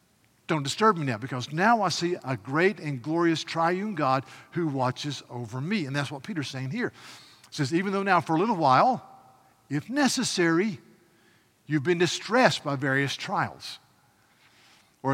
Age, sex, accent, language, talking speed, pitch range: 50-69, male, American, English, 165 wpm, 135-175 Hz